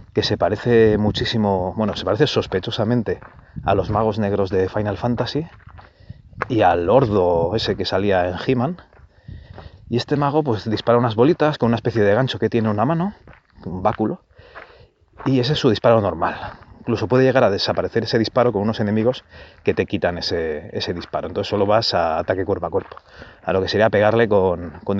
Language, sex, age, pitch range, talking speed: Spanish, male, 30-49, 100-125 Hz, 185 wpm